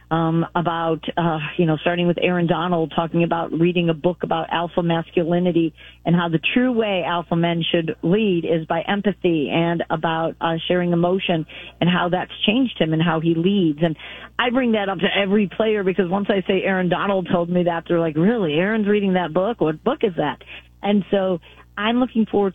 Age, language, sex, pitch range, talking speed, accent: 40-59, English, female, 170-190 Hz, 200 wpm, American